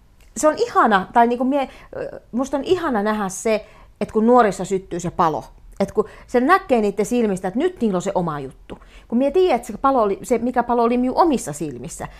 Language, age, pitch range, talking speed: Finnish, 40-59, 170-255 Hz, 205 wpm